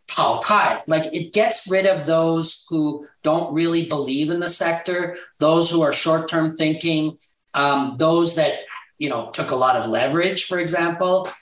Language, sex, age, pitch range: Chinese, male, 40-59, 145-170 Hz